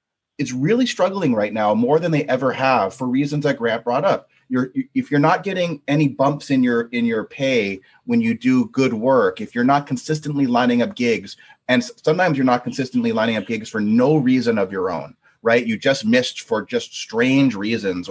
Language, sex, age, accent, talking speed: English, male, 30-49, American, 205 wpm